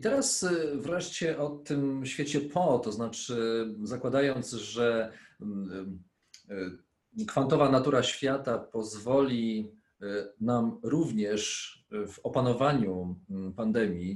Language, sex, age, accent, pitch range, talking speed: Polish, male, 40-59, native, 110-140 Hz, 85 wpm